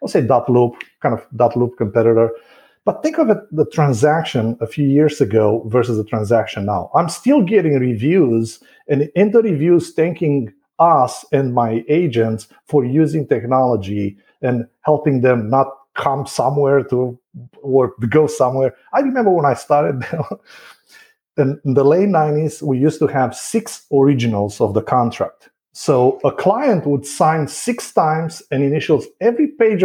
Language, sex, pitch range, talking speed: English, male, 120-175 Hz, 155 wpm